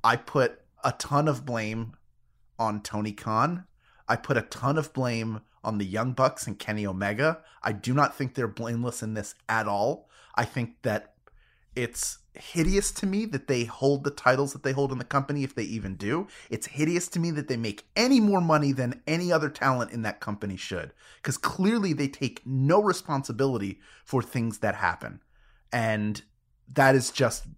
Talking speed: 185 wpm